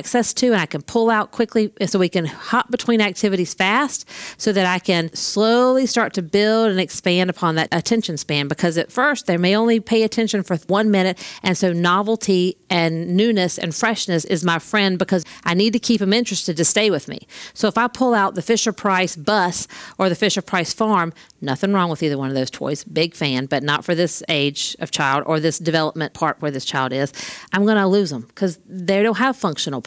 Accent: American